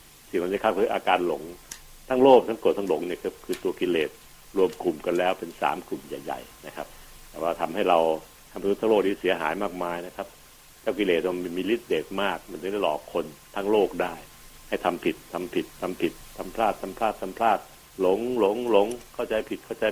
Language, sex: Thai, male